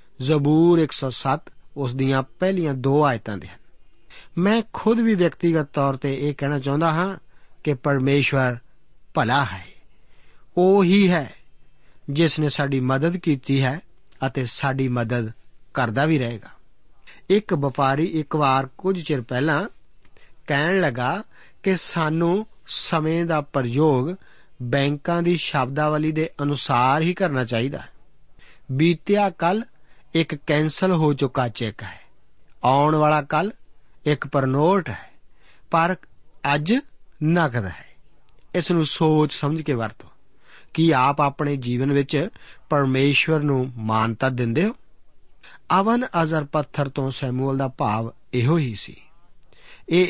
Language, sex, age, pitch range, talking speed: Punjabi, male, 50-69, 135-165 Hz, 125 wpm